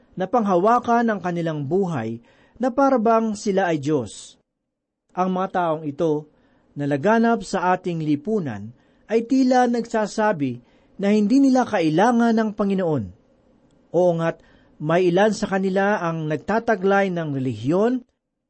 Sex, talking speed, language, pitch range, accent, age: male, 125 wpm, Filipino, 170-230 Hz, native, 40-59